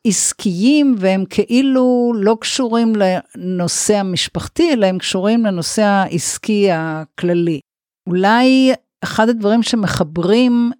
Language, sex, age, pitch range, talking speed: Hebrew, female, 50-69, 170-225 Hz, 95 wpm